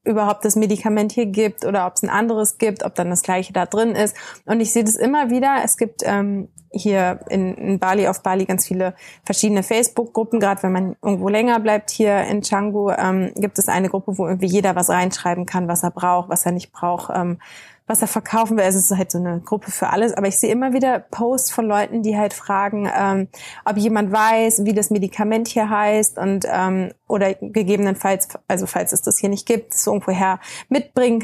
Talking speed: 215 wpm